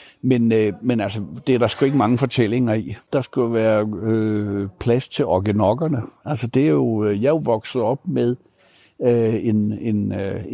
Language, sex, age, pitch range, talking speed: Danish, male, 60-79, 105-125 Hz, 175 wpm